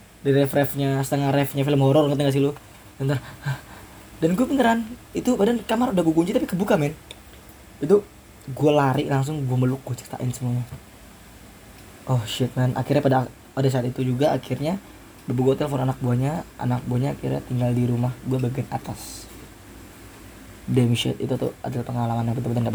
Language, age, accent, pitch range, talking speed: English, 20-39, Indonesian, 105-135 Hz, 175 wpm